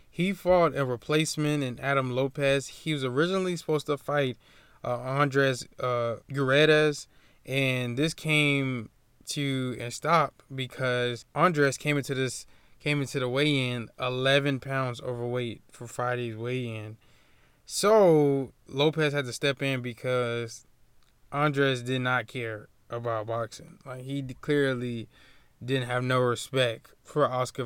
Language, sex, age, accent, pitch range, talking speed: English, male, 20-39, American, 120-145 Hz, 135 wpm